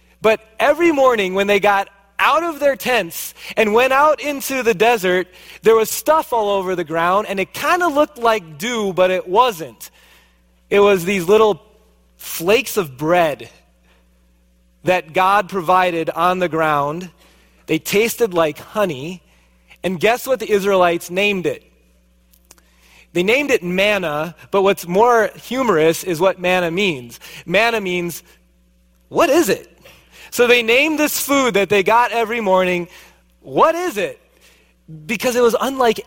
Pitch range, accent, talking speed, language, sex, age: 165-230 Hz, American, 150 wpm, English, male, 30-49